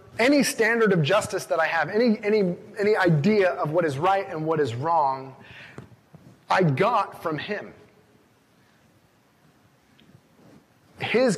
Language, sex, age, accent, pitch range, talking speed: English, male, 30-49, American, 140-180 Hz, 125 wpm